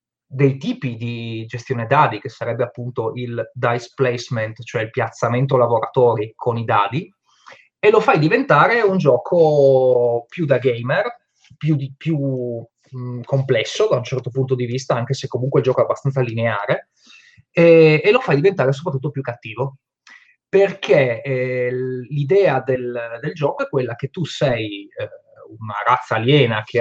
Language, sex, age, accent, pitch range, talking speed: Italian, male, 30-49, native, 120-145 Hz, 155 wpm